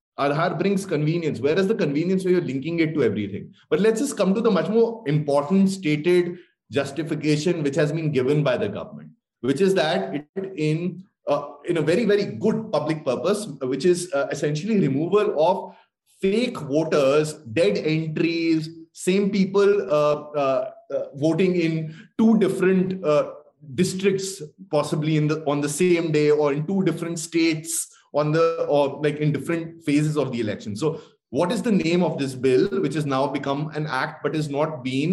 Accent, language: Indian, English